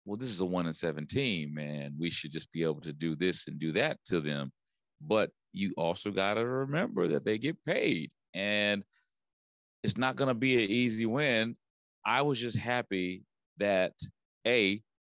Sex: male